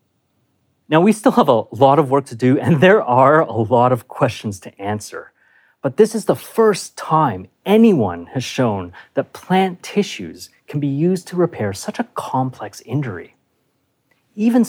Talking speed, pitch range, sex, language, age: 170 wpm, 110-175 Hz, male, English, 30-49